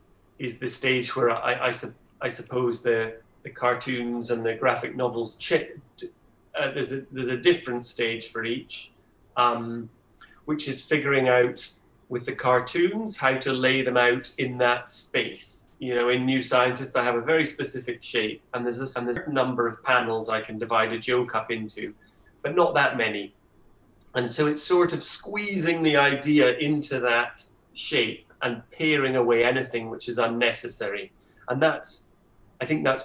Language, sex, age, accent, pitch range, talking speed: Polish, male, 30-49, British, 115-130 Hz, 165 wpm